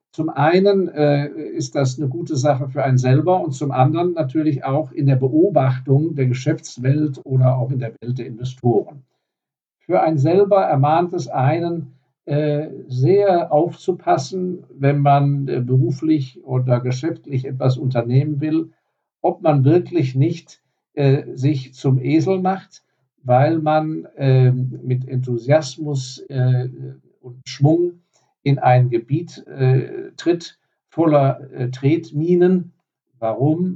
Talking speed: 130 wpm